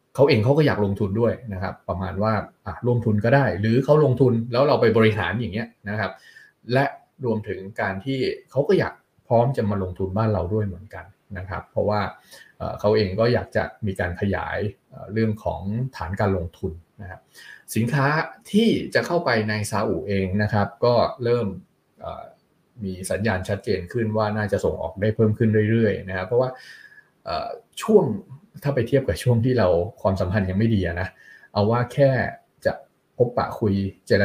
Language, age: Thai, 20-39